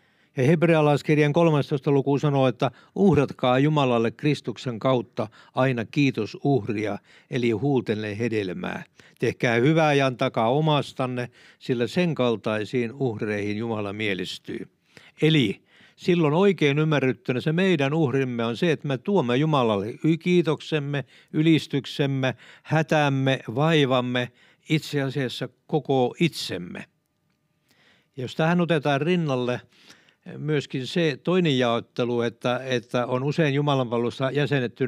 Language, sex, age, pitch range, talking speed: Finnish, male, 60-79, 125-150 Hz, 105 wpm